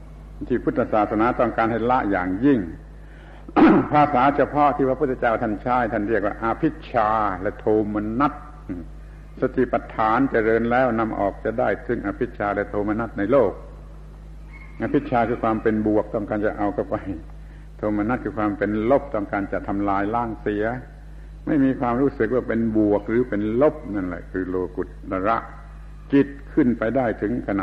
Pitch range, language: 100-125 Hz, Thai